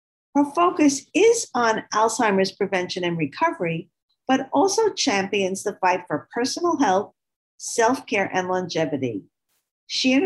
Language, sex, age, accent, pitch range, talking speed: English, female, 50-69, American, 180-265 Hz, 125 wpm